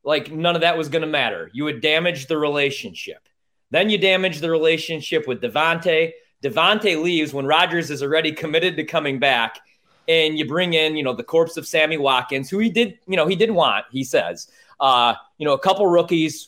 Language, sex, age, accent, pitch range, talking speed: English, male, 30-49, American, 135-175 Hz, 210 wpm